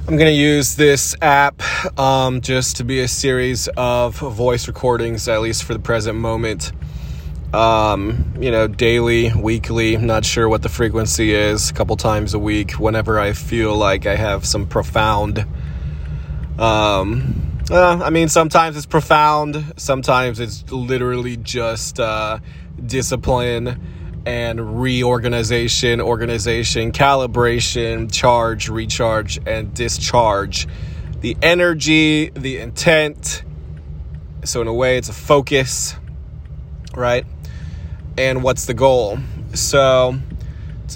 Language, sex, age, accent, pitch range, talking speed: English, male, 20-39, American, 105-130 Hz, 120 wpm